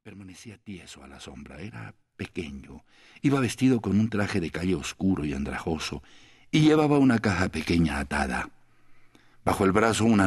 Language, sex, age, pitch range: English, male, 60-79, 85-120 Hz